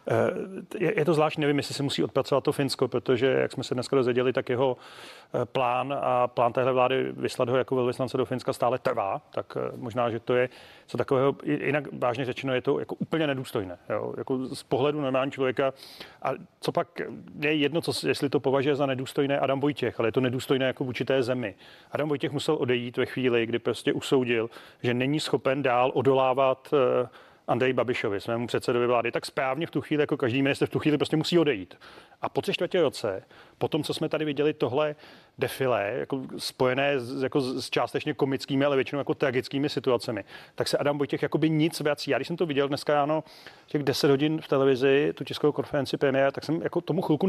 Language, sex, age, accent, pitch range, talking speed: Czech, male, 30-49, native, 130-150 Hz, 200 wpm